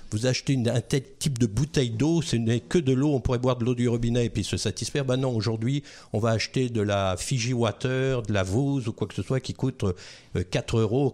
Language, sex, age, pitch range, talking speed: French, male, 50-69, 110-145 Hz, 255 wpm